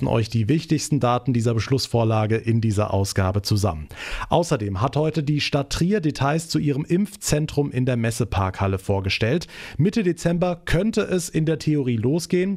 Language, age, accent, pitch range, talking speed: German, 30-49, German, 115-160 Hz, 155 wpm